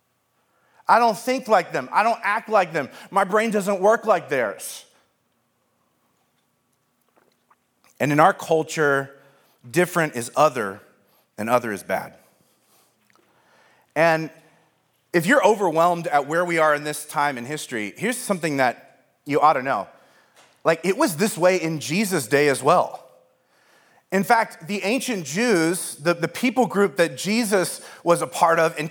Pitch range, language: 155-210 Hz, English